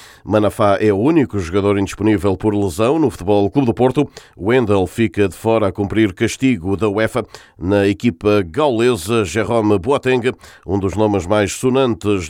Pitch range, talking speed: 100-130 Hz, 155 wpm